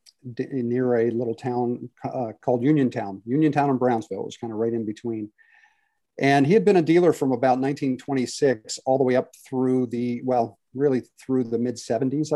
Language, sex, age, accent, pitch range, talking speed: English, male, 50-69, American, 115-135 Hz, 185 wpm